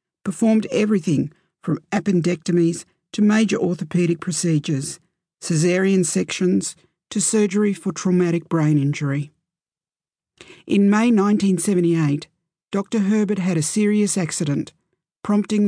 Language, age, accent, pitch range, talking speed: English, 50-69, Australian, 155-195 Hz, 100 wpm